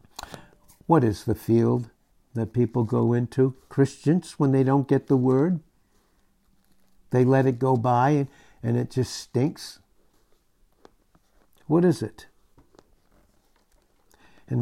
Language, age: English, 60-79